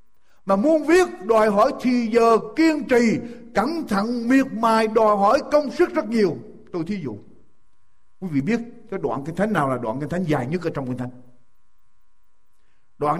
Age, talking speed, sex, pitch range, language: 60-79, 185 wpm, male, 185-270 Hz, Vietnamese